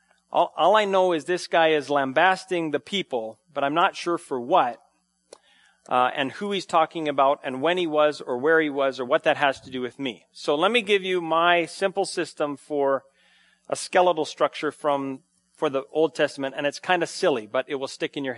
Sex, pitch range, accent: male, 130-175 Hz, American